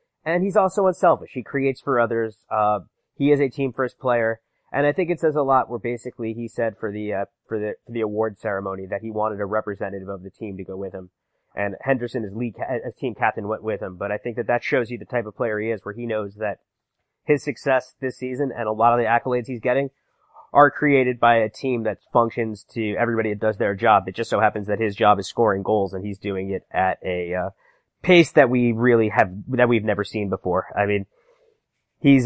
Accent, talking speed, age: American, 240 wpm, 30-49